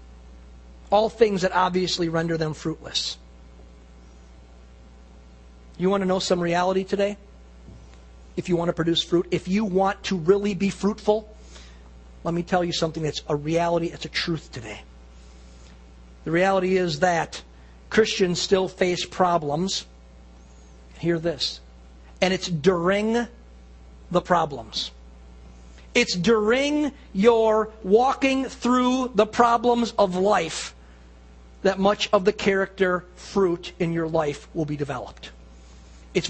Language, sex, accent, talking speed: English, male, American, 125 wpm